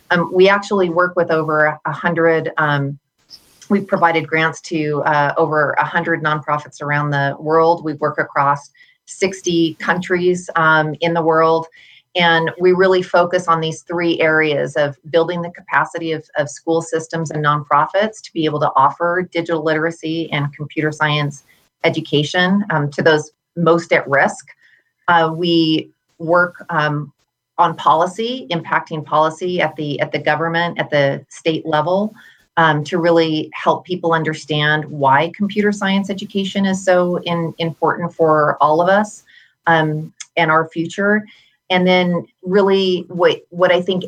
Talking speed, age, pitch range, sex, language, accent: 150 wpm, 30-49, 155-180 Hz, female, English, American